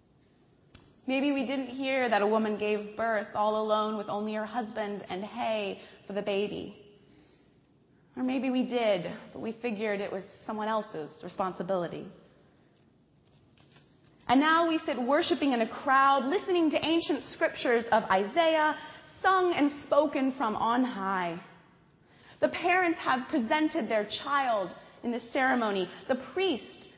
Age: 20-39